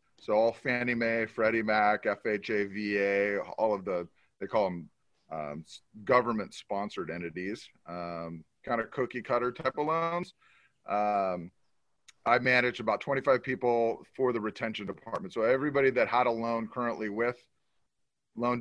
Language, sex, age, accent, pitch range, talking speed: English, male, 30-49, American, 95-120 Hz, 140 wpm